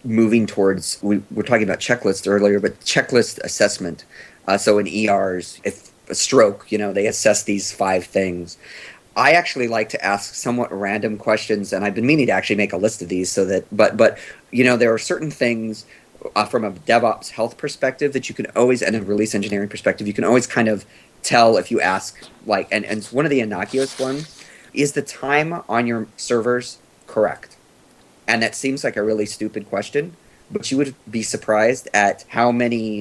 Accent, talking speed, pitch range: American, 200 wpm, 100-120 Hz